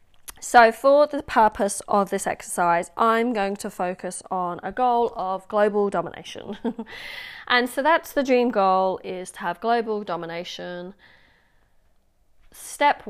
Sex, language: female, English